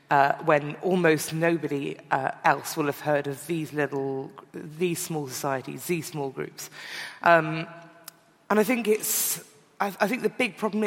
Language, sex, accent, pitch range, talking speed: English, female, British, 145-195 Hz, 155 wpm